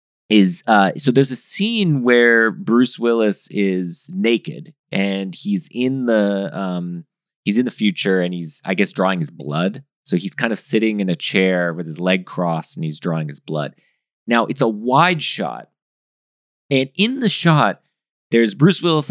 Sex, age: male, 30-49